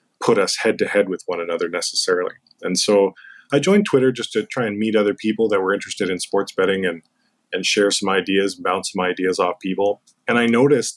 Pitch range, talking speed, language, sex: 95-120 Hz, 220 wpm, English, male